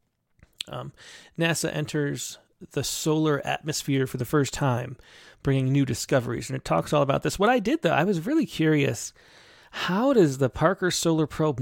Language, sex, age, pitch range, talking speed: English, male, 30-49, 125-155 Hz, 170 wpm